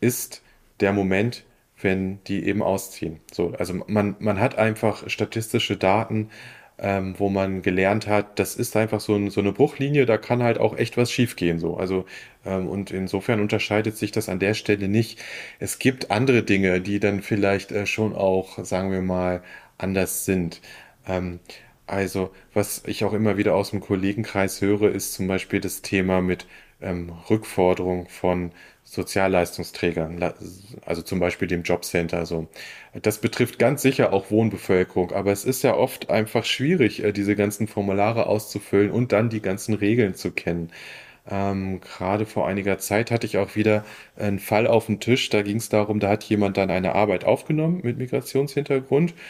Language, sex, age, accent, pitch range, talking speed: German, male, 30-49, German, 95-110 Hz, 165 wpm